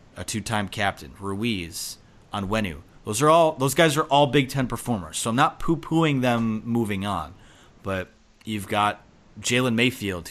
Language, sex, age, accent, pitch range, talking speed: English, male, 30-49, American, 95-120 Hz, 155 wpm